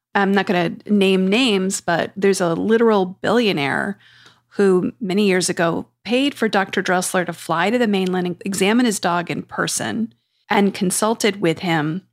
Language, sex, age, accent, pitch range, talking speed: English, female, 40-59, American, 175-215 Hz, 170 wpm